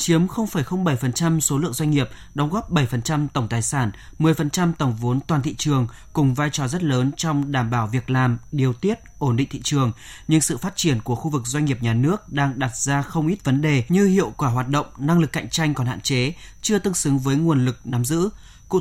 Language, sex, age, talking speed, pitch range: Vietnamese, male, 20-39, 235 wpm, 130-165 Hz